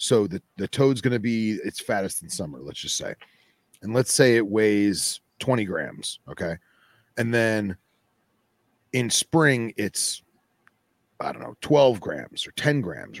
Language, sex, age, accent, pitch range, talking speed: English, male, 30-49, American, 105-140 Hz, 160 wpm